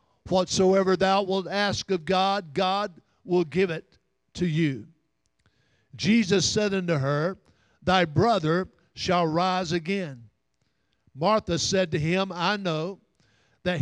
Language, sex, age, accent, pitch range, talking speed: English, male, 50-69, American, 150-205 Hz, 120 wpm